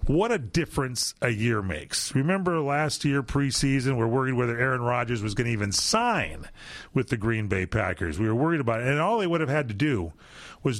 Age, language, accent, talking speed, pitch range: 40-59, English, American, 220 wpm, 110-145 Hz